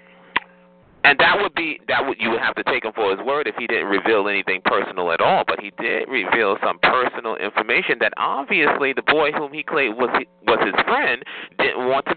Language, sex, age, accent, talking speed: English, male, 40-59, American, 215 wpm